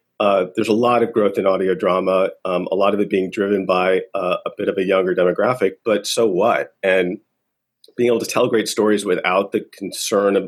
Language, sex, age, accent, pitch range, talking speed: English, male, 40-59, American, 85-105 Hz, 210 wpm